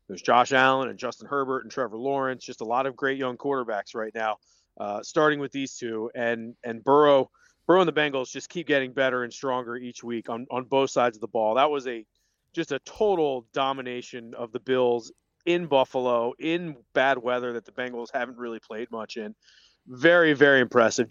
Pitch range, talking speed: 120-145 Hz, 200 wpm